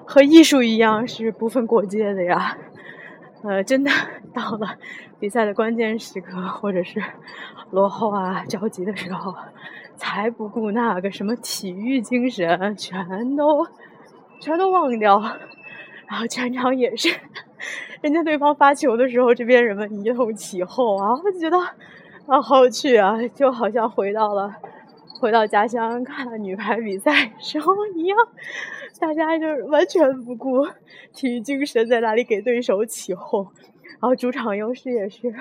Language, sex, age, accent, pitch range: Chinese, female, 20-39, native, 215-280 Hz